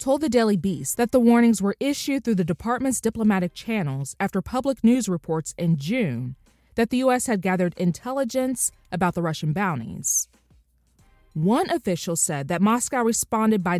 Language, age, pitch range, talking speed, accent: English, 20-39, 155-245 Hz, 160 wpm, American